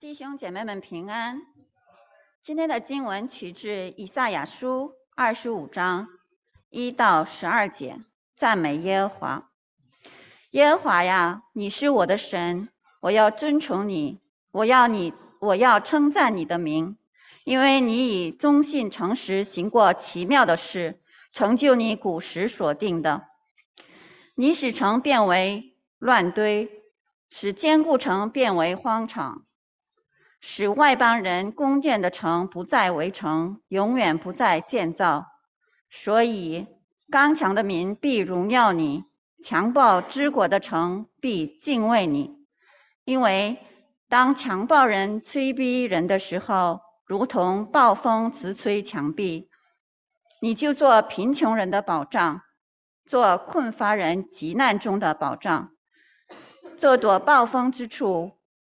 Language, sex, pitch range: English, female, 185-275 Hz